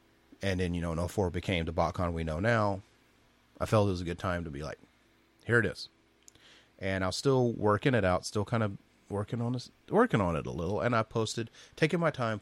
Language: English